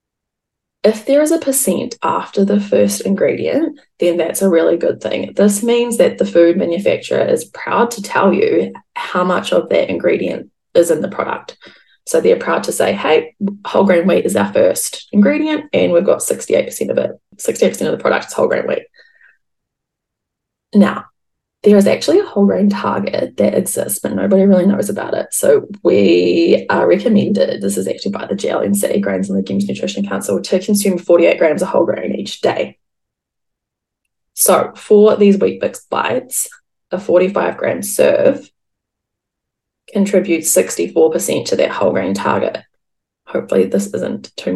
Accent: Australian